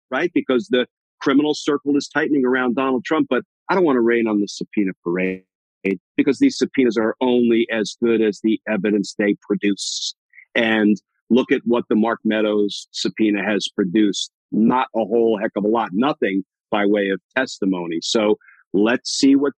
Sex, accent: male, American